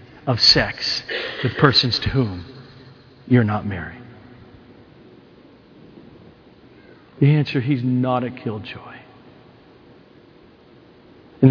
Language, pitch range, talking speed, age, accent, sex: English, 125-190 Hz, 85 wpm, 40-59, American, male